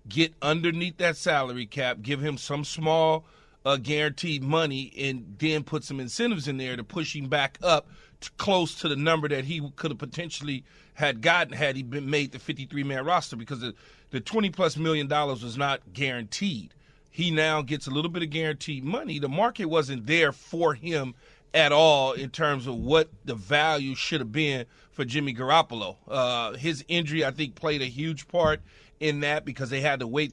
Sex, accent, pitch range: male, American, 140-170 Hz